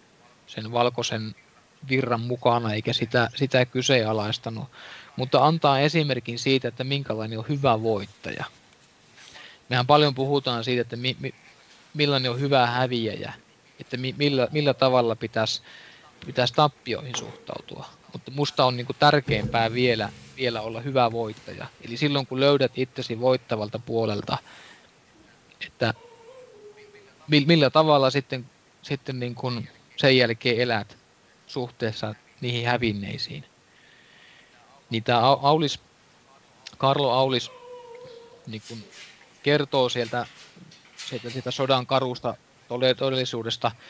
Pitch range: 115-140 Hz